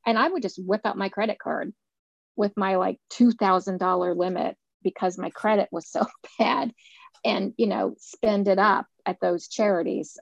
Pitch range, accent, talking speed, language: 190-230 Hz, American, 170 wpm, English